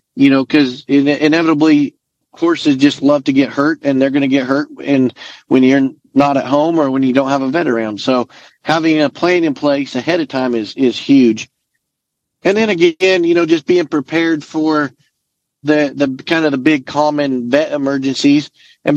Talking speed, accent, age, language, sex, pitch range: 195 wpm, American, 40-59, English, male, 135-165 Hz